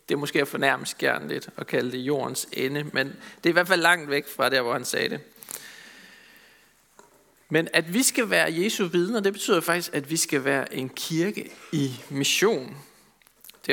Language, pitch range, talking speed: Danish, 135-185 Hz, 195 wpm